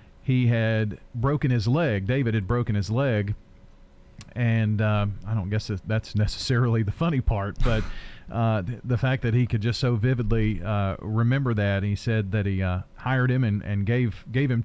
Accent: American